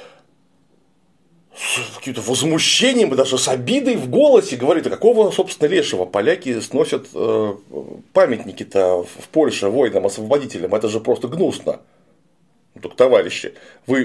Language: Russian